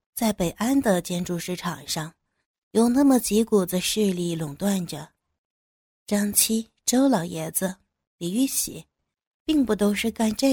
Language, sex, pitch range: Chinese, female, 180-230 Hz